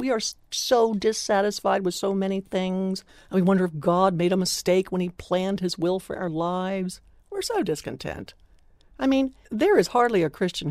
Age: 60-79